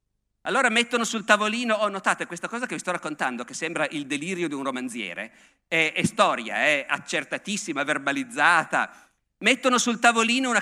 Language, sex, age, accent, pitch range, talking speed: Italian, male, 50-69, native, 170-250 Hz, 170 wpm